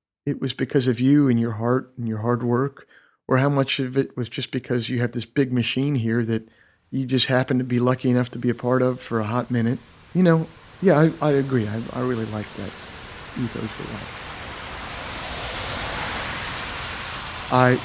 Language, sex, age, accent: English, male, 50-69, American